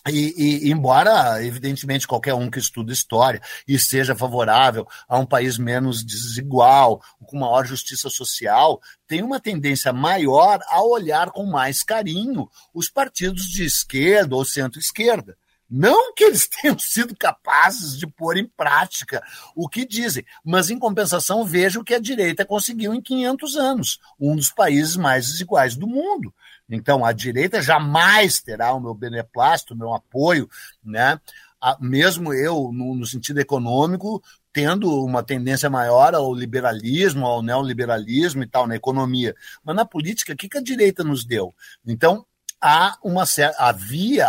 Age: 50-69